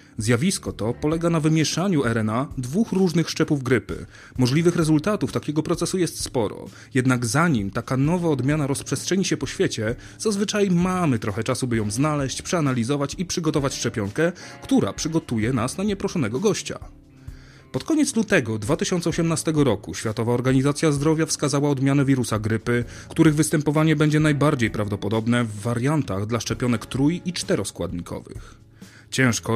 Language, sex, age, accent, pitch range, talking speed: Polish, male, 30-49, native, 115-155 Hz, 135 wpm